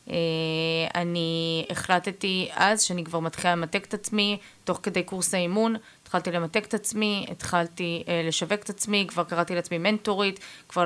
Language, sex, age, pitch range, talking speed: Hebrew, female, 20-39, 165-200 Hz, 155 wpm